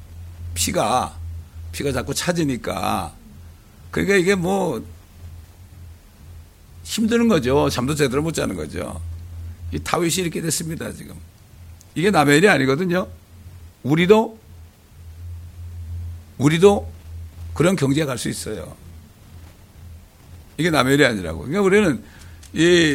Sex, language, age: male, Korean, 60-79